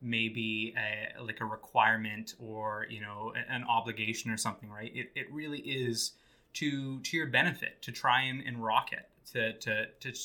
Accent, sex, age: American, male, 20-39